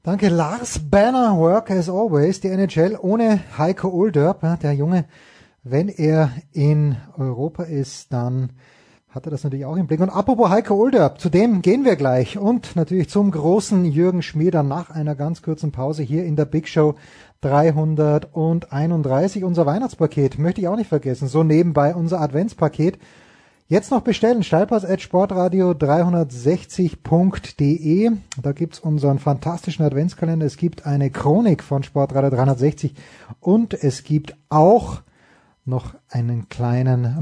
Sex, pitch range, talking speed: male, 140-185 Hz, 140 wpm